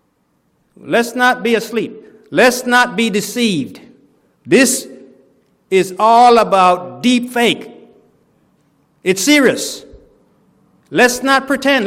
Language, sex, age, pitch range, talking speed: English, male, 60-79, 185-270 Hz, 95 wpm